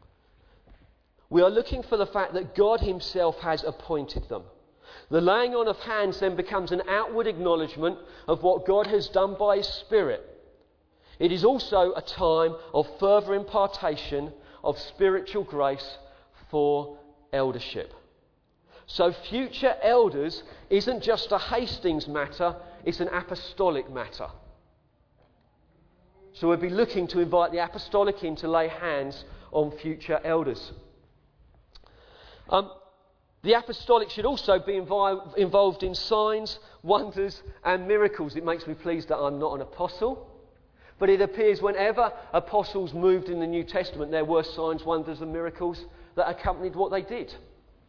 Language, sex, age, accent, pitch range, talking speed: English, male, 40-59, British, 160-205 Hz, 140 wpm